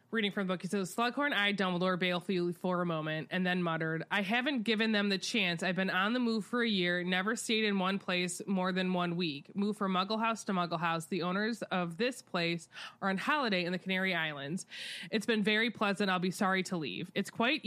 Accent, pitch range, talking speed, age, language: American, 180-230 Hz, 235 wpm, 20-39, English